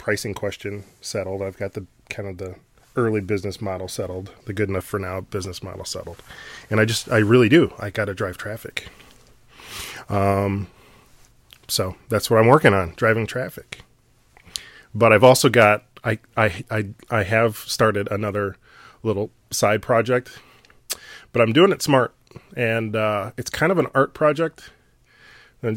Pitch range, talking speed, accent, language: 100-120 Hz, 160 wpm, American, English